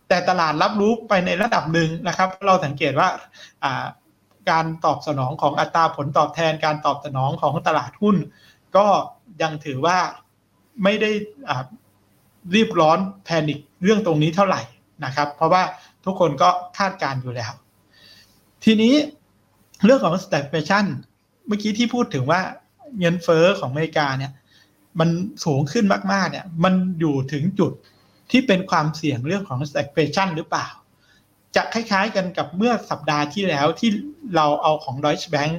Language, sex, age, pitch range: Thai, male, 60-79, 145-190 Hz